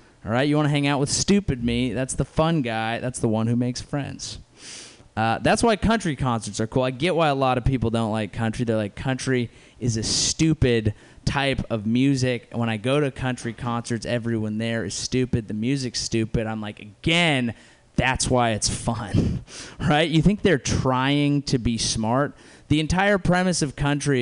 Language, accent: English, American